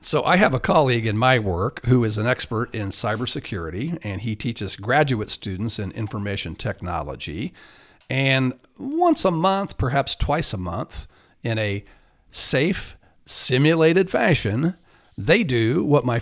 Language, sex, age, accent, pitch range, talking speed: English, male, 50-69, American, 105-140 Hz, 145 wpm